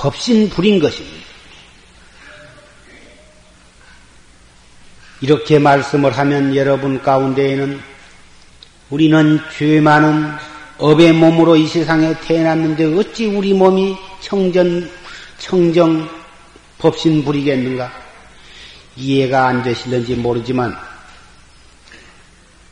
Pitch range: 135-170 Hz